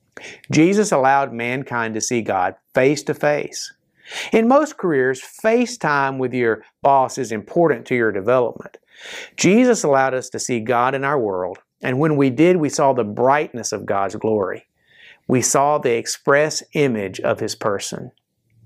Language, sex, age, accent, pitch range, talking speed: English, male, 50-69, American, 115-160 Hz, 150 wpm